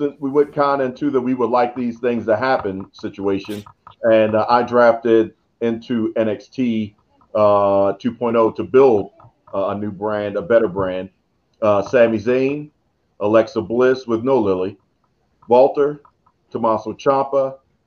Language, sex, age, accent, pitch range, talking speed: English, male, 40-59, American, 110-140 Hz, 140 wpm